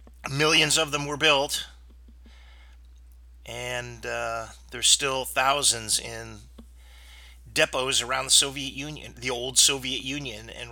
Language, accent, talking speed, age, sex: English, American, 120 wpm, 40-59, male